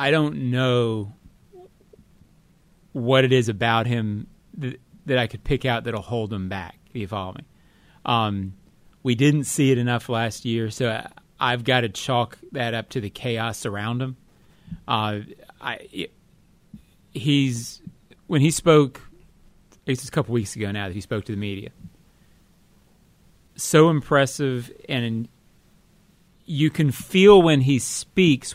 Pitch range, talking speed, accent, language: 115-140 Hz, 150 wpm, American, English